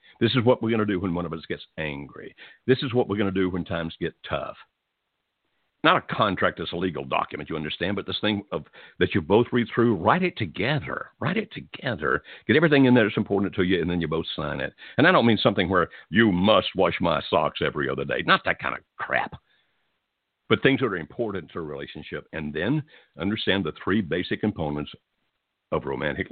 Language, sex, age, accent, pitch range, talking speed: English, male, 60-79, American, 85-110 Hz, 225 wpm